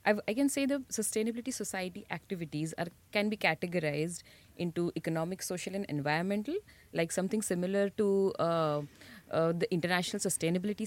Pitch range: 165-210 Hz